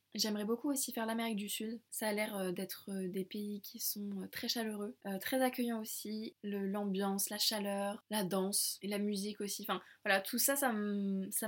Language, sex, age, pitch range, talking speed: French, female, 20-39, 200-225 Hz, 185 wpm